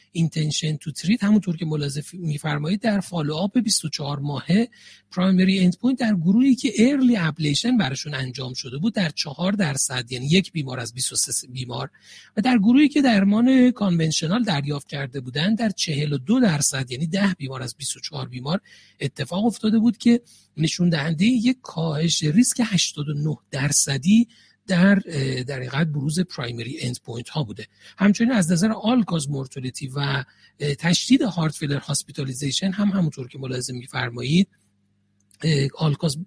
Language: Persian